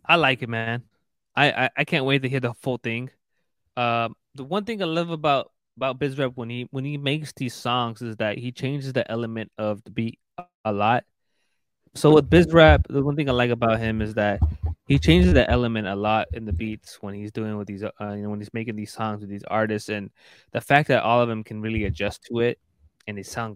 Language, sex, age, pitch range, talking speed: English, male, 20-39, 110-130 Hz, 235 wpm